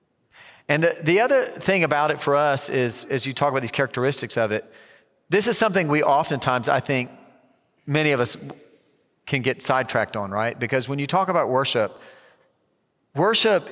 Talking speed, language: 175 wpm, English